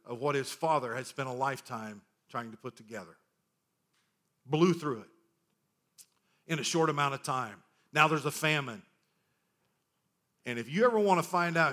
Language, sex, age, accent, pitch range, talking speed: English, male, 50-69, American, 140-170 Hz, 170 wpm